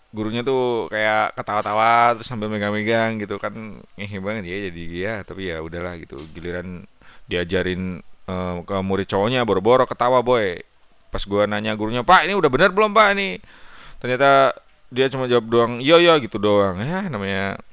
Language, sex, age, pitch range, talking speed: Indonesian, male, 30-49, 95-125 Hz, 170 wpm